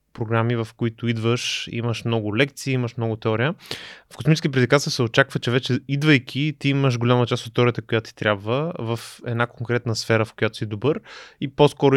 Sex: male